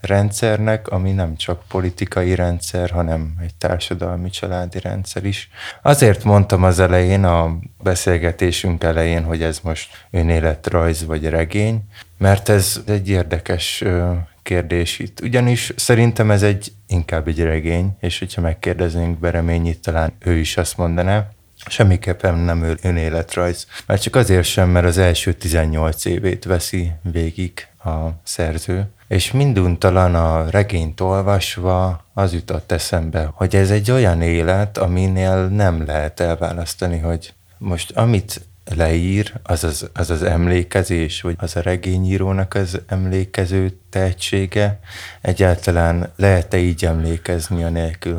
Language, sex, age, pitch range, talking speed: Hungarian, male, 20-39, 85-95 Hz, 125 wpm